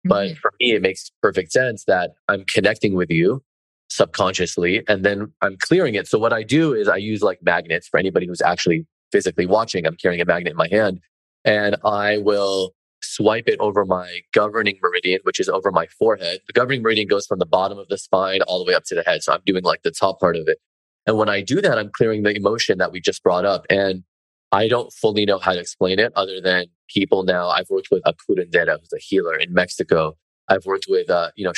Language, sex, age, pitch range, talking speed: English, male, 20-39, 90-130 Hz, 235 wpm